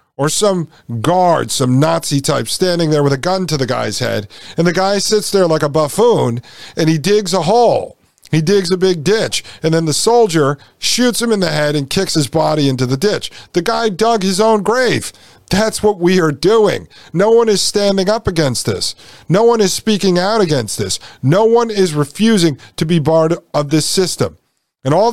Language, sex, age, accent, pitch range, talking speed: English, male, 50-69, American, 140-195 Hz, 205 wpm